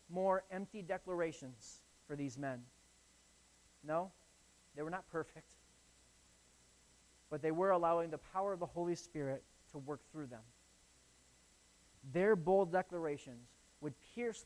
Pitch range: 115-160 Hz